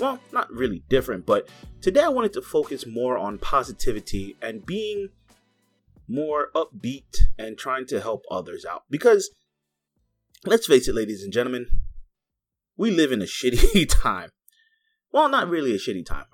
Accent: American